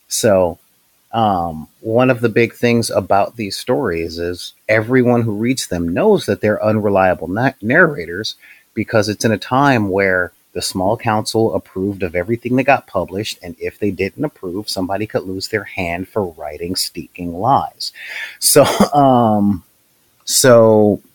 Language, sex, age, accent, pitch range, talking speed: English, male, 30-49, American, 95-125 Hz, 150 wpm